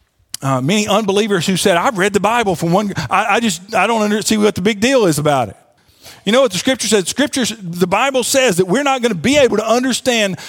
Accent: American